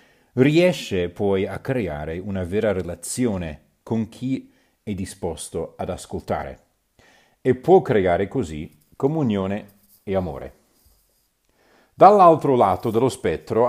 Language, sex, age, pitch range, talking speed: Italian, male, 40-59, 90-125 Hz, 105 wpm